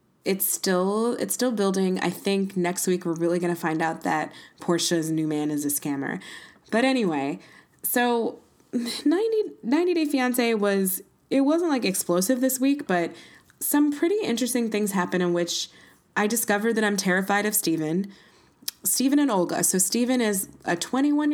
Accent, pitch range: American, 185-280 Hz